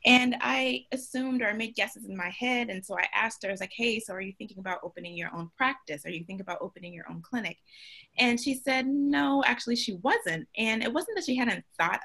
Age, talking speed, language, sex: 20-39, 245 wpm, English, female